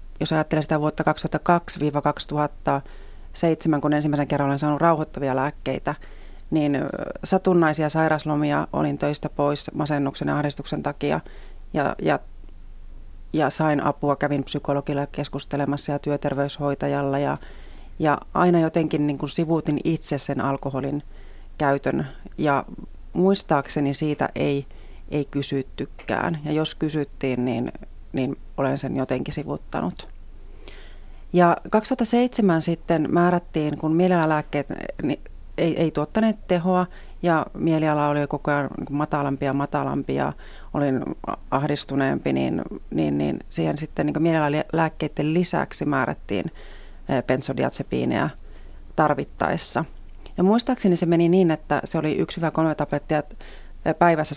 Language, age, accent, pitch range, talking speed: Finnish, 30-49, native, 140-160 Hz, 115 wpm